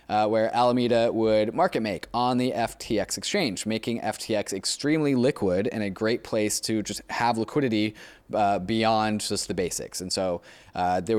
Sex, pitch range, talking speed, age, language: male, 100-125 Hz, 165 wpm, 20-39, English